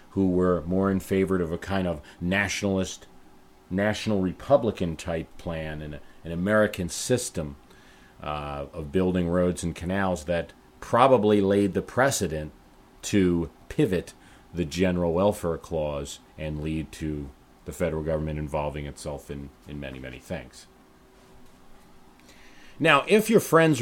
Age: 40-59